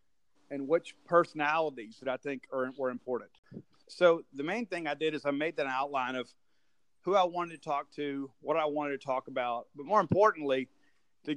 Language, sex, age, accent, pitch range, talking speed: English, male, 40-59, American, 130-155 Hz, 195 wpm